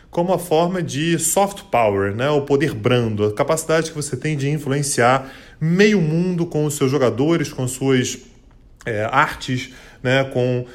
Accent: Brazilian